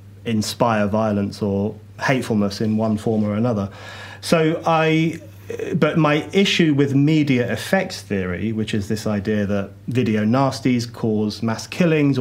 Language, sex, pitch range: English, male, 105-125 Hz